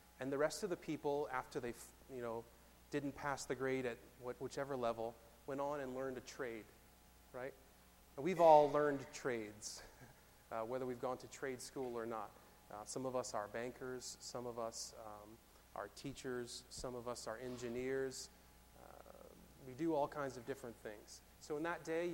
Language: English